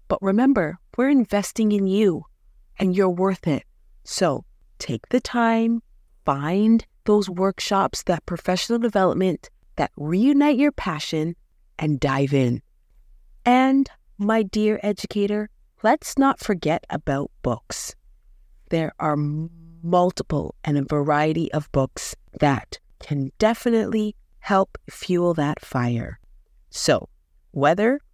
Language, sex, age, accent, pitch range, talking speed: English, female, 30-49, American, 150-210 Hz, 115 wpm